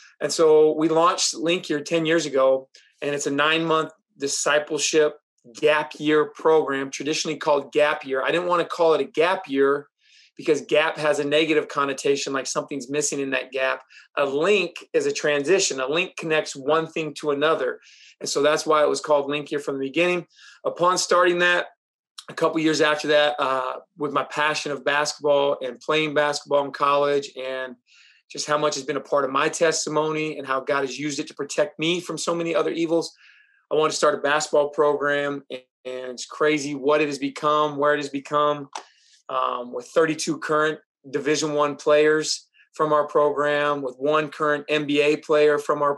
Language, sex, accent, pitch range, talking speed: English, male, American, 145-155 Hz, 190 wpm